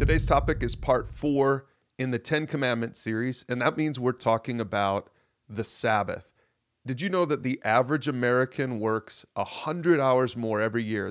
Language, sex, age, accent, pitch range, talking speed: English, male, 30-49, American, 115-140 Hz, 175 wpm